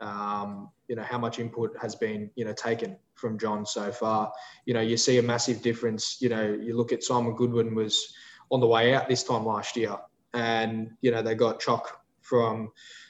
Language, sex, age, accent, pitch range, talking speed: English, male, 10-29, Australian, 110-120 Hz, 205 wpm